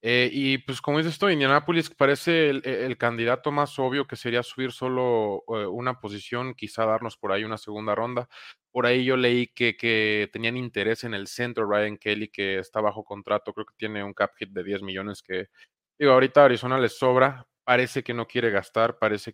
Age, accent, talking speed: 20-39, Mexican, 200 wpm